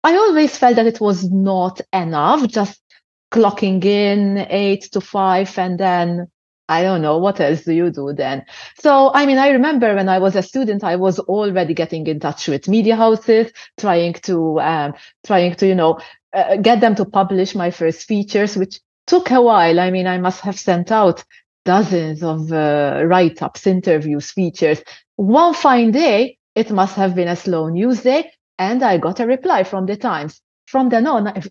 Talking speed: 190 wpm